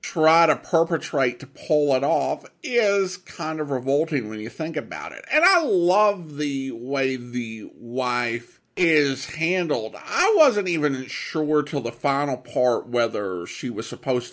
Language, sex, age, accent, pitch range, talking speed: English, male, 50-69, American, 125-170 Hz, 155 wpm